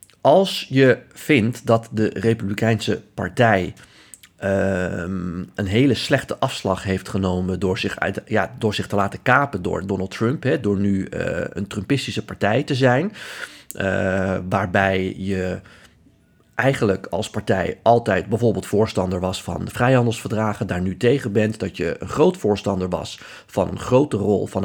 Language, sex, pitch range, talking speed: Dutch, male, 95-120 Hz, 155 wpm